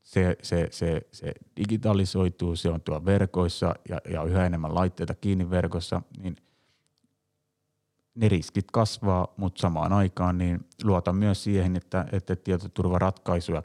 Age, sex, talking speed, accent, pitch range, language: 30-49, male, 130 wpm, native, 85-95 Hz, Finnish